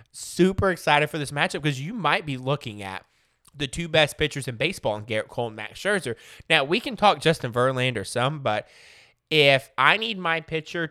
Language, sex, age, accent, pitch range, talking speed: English, male, 20-39, American, 120-170 Hz, 200 wpm